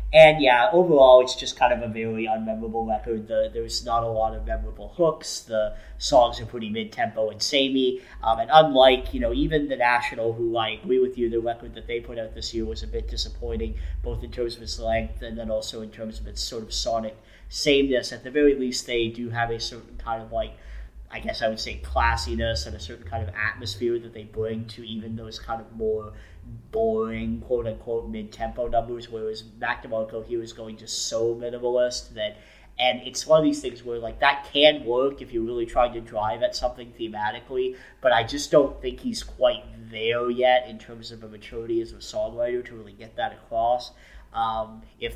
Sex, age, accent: male, 30-49, American